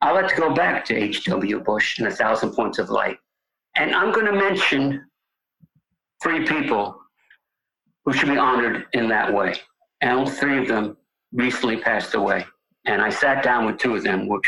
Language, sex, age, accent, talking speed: English, male, 60-79, American, 185 wpm